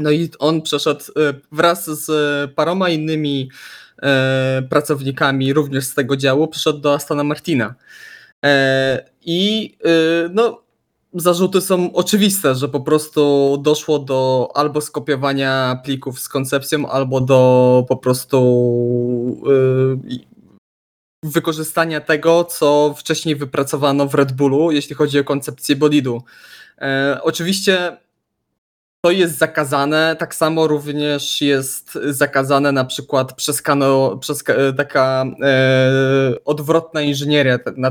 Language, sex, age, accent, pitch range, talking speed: Polish, male, 20-39, native, 135-155 Hz, 105 wpm